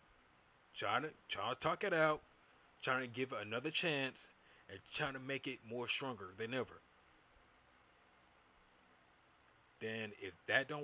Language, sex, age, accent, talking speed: English, male, 20-39, American, 145 wpm